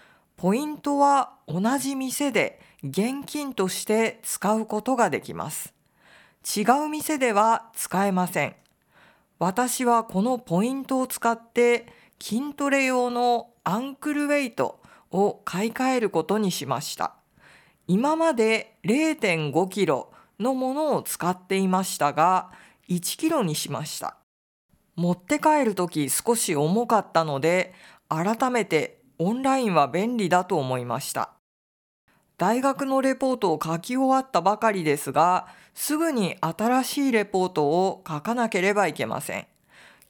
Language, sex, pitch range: Japanese, female, 175-260 Hz